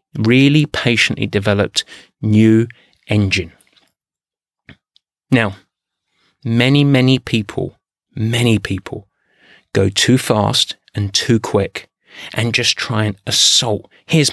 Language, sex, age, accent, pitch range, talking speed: English, male, 30-49, British, 105-125 Hz, 95 wpm